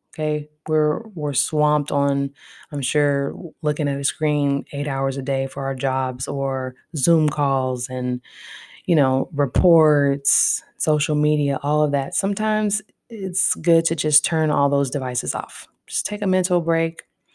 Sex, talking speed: female, 155 wpm